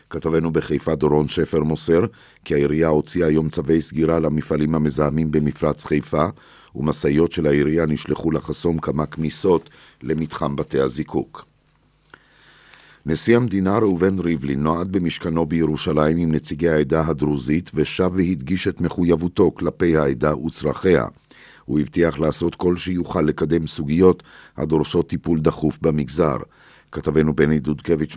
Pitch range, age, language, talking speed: 75-85 Hz, 50-69, Hebrew, 120 wpm